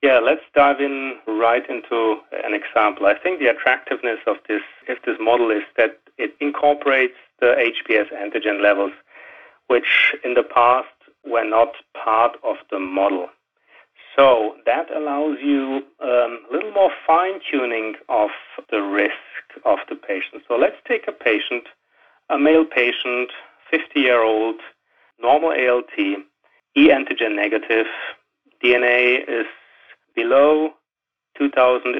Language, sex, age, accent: English, male, 40-59, German